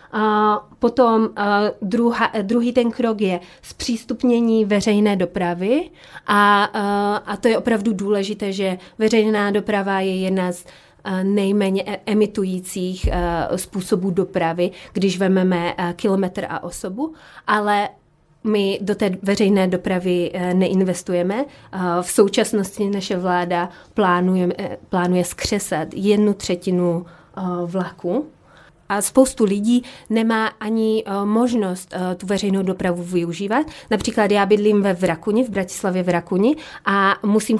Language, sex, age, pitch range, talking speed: Slovak, female, 30-49, 185-215 Hz, 110 wpm